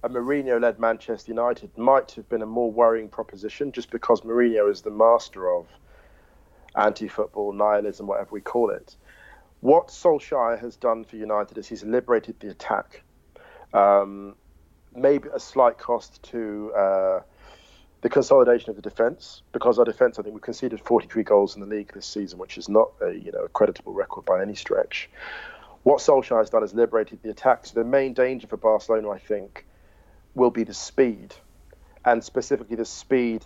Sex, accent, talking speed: male, British, 170 wpm